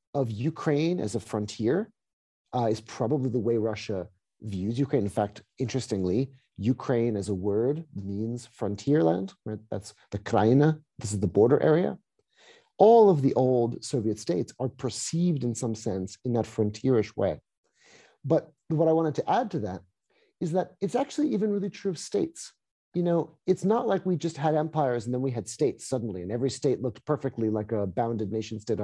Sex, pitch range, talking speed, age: male, 115-170 Hz, 185 wpm, 40-59